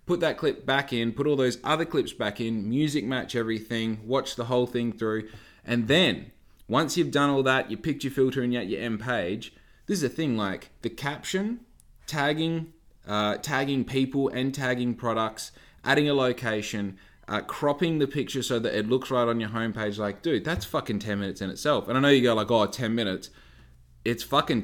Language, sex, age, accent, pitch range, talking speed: English, male, 20-39, Australian, 100-120 Hz, 205 wpm